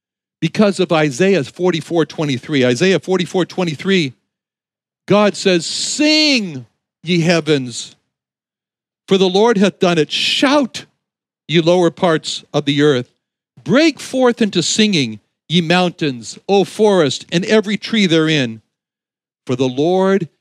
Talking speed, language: 130 wpm, English